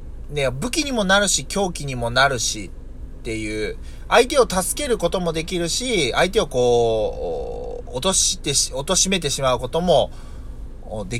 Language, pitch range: Japanese, 110-175 Hz